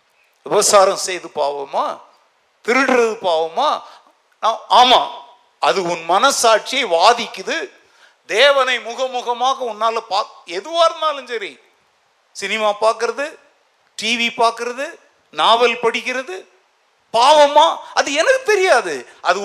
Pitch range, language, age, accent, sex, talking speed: 230-330 Hz, Tamil, 60-79, native, male, 85 wpm